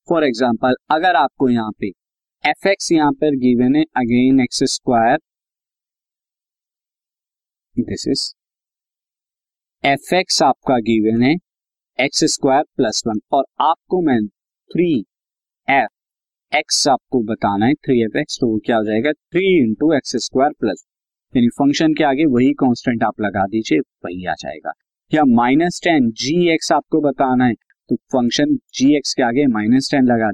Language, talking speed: Hindi, 125 wpm